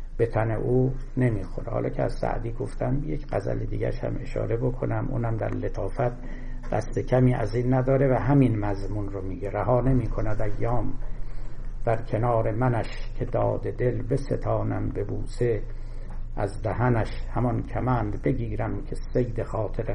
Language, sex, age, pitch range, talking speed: Persian, male, 60-79, 110-130 Hz, 140 wpm